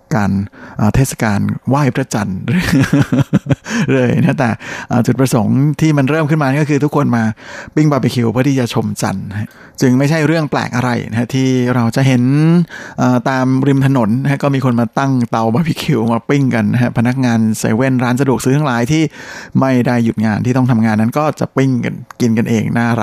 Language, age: Thai, 60-79